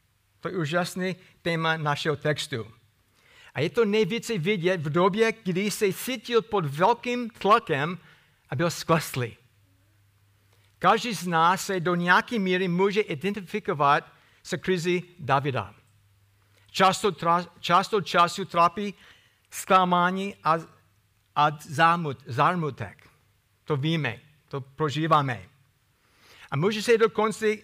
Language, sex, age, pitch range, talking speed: Czech, male, 60-79, 125-195 Hz, 110 wpm